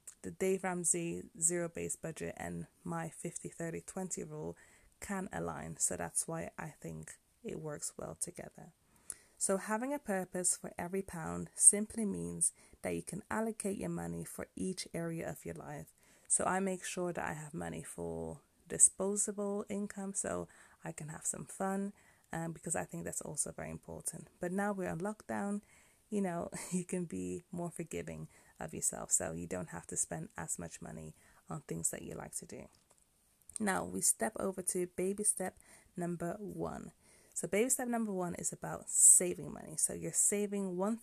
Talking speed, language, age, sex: 175 wpm, English, 30-49, female